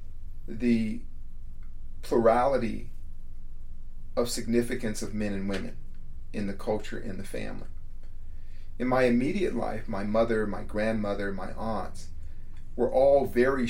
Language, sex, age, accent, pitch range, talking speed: English, male, 40-59, American, 90-115 Hz, 120 wpm